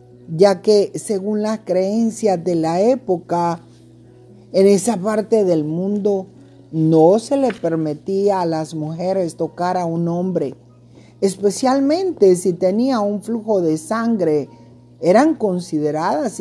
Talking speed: 120 wpm